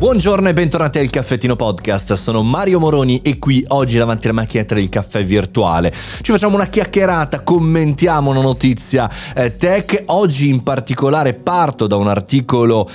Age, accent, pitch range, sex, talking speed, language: 30-49, native, 105-140 Hz, male, 155 wpm, Italian